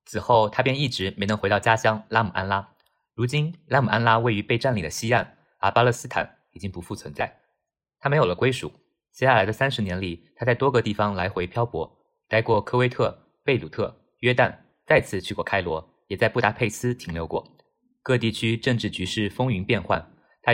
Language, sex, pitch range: Chinese, male, 95-125 Hz